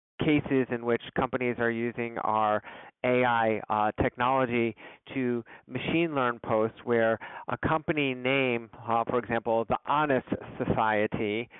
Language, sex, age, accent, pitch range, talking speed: English, male, 40-59, American, 115-135 Hz, 125 wpm